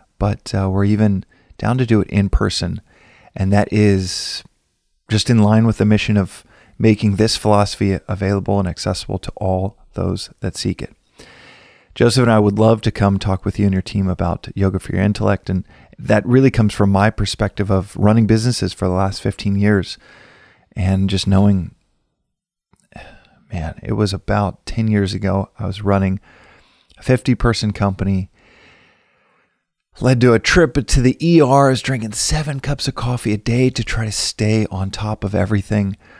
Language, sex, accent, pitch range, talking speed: English, male, American, 95-110 Hz, 170 wpm